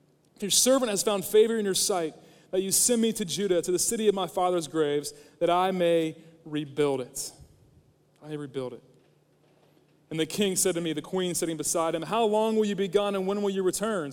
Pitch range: 165-210 Hz